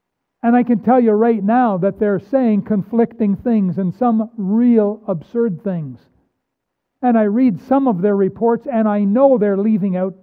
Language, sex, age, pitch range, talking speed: English, male, 60-79, 185-240 Hz, 175 wpm